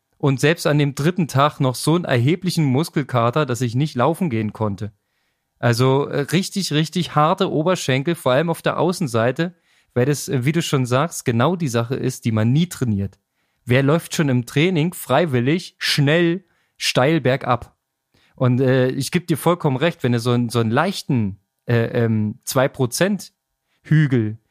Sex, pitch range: male, 125-165 Hz